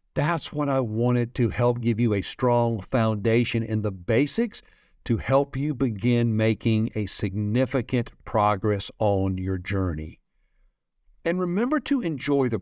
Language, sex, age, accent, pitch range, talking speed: English, male, 60-79, American, 110-155 Hz, 145 wpm